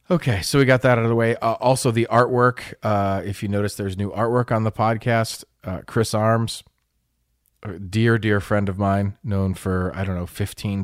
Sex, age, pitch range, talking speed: male, 30-49, 90-115 Hz, 205 wpm